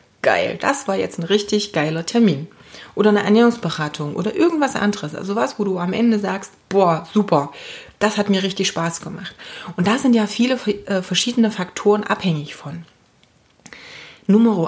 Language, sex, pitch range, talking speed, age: German, female, 175-230 Hz, 165 wpm, 30-49